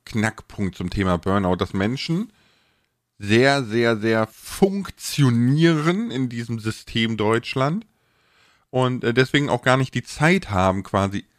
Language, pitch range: German, 105-130 Hz